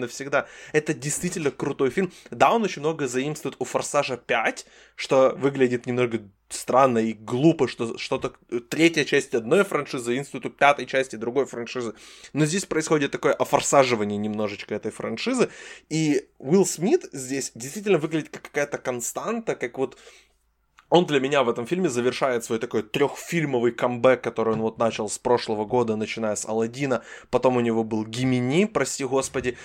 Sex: male